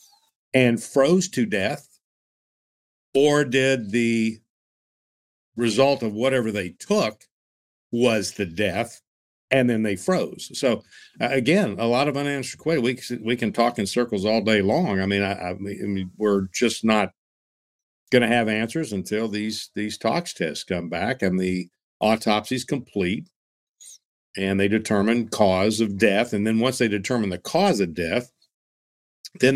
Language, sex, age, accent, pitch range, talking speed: English, male, 50-69, American, 95-120 Hz, 150 wpm